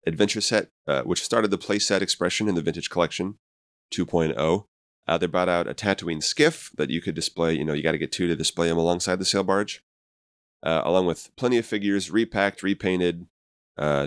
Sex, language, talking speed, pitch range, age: male, English, 200 wpm, 75-95 Hz, 30-49